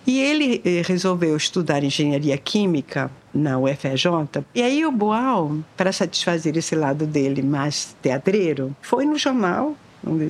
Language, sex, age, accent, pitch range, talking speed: Portuguese, female, 50-69, Brazilian, 170-240 Hz, 135 wpm